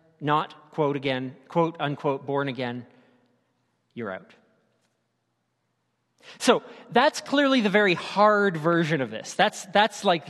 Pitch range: 140-180 Hz